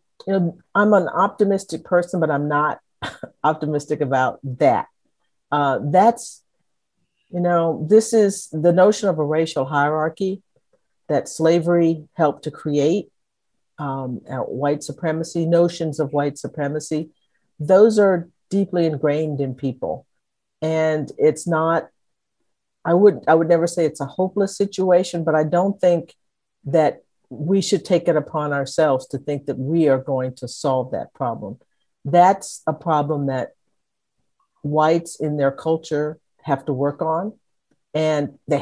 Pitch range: 145-175 Hz